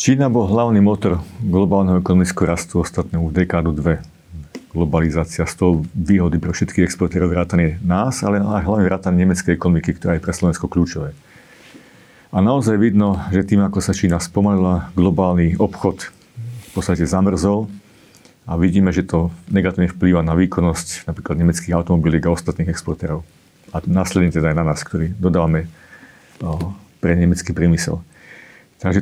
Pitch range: 85-100 Hz